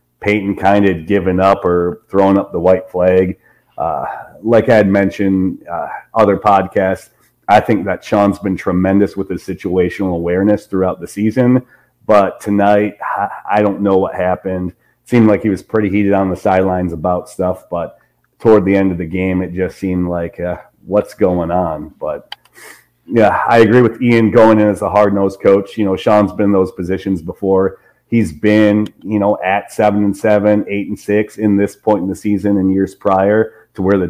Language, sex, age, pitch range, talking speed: English, male, 30-49, 95-105 Hz, 190 wpm